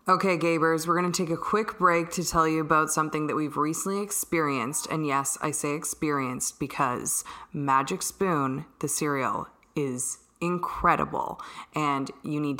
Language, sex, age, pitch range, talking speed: English, female, 20-39, 140-170 Hz, 155 wpm